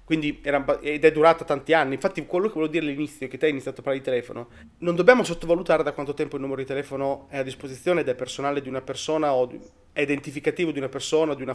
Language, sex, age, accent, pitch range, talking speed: Italian, male, 30-49, native, 135-165 Hz, 260 wpm